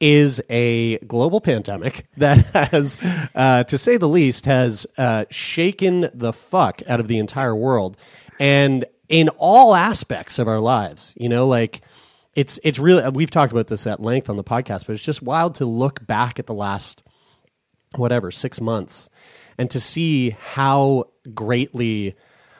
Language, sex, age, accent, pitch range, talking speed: English, male, 30-49, American, 110-155 Hz, 160 wpm